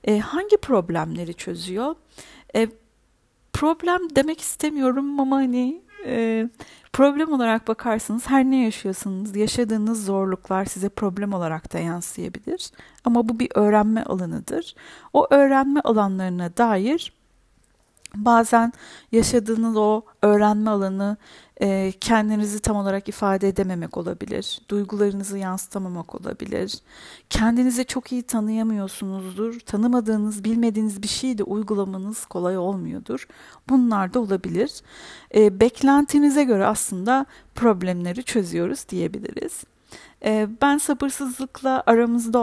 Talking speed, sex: 100 wpm, female